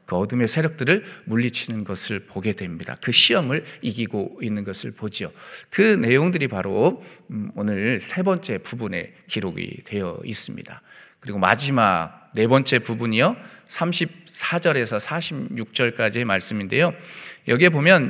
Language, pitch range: Korean, 110-170 Hz